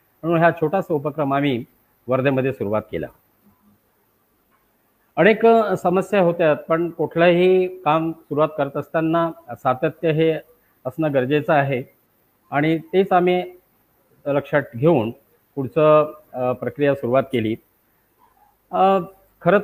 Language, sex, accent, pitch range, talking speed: Marathi, male, native, 145-180 Hz, 75 wpm